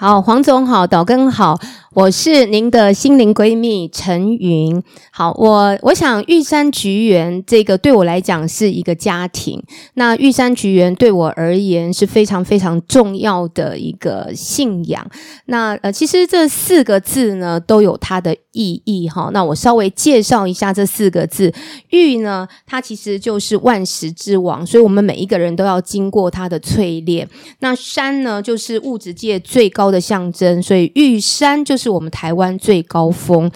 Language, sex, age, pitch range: Chinese, female, 20-39, 180-235 Hz